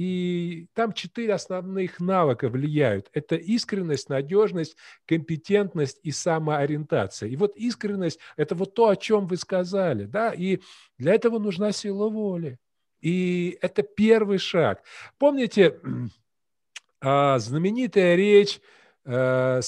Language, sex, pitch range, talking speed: Russian, male, 140-210 Hz, 115 wpm